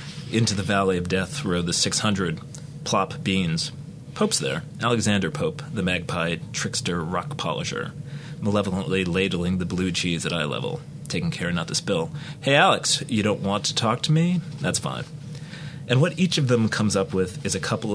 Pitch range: 95-150 Hz